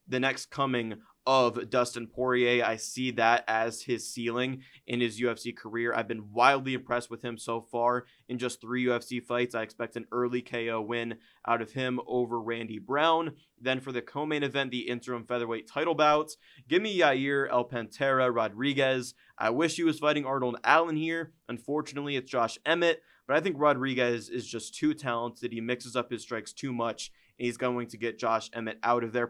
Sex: male